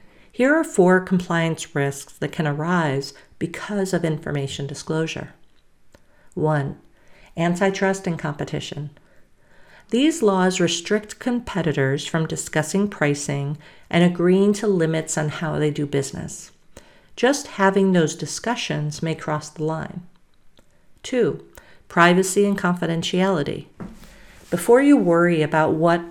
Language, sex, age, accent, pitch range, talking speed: English, female, 50-69, American, 155-195 Hz, 115 wpm